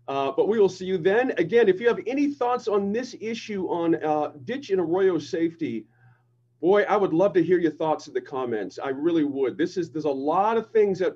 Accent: American